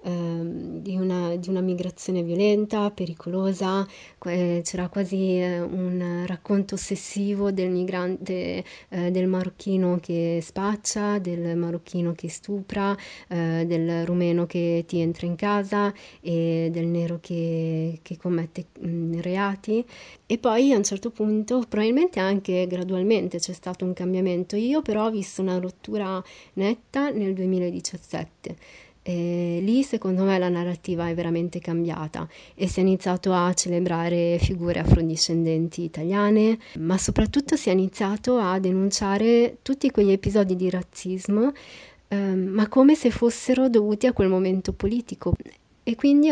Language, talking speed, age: Italian, 125 wpm, 20-39